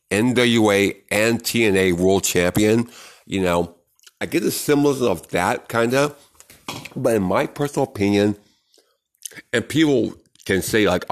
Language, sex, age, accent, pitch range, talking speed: English, male, 50-69, American, 90-120 Hz, 135 wpm